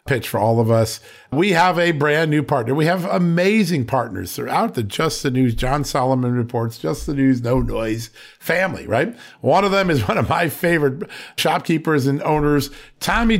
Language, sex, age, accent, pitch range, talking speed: English, male, 50-69, American, 130-175 Hz, 190 wpm